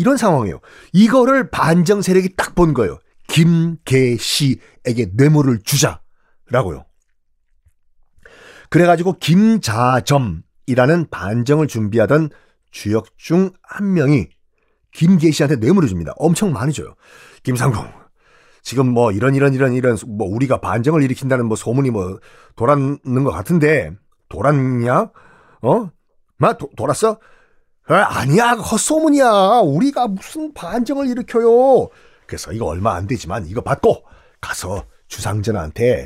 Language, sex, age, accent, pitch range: Korean, male, 40-59, native, 125-190 Hz